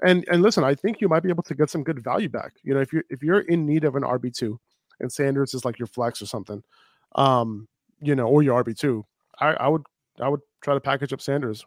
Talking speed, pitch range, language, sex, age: 265 wpm, 125-150 Hz, English, male, 20-39